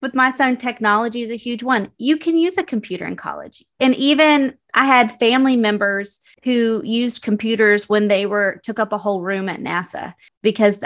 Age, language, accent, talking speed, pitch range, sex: 30-49, English, American, 195 wpm, 195-235 Hz, female